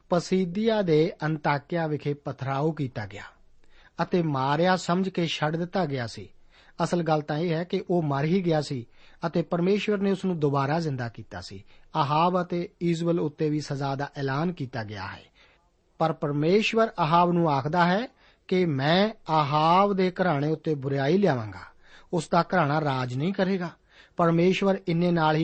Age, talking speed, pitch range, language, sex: 50-69, 95 wpm, 145-185 Hz, Punjabi, male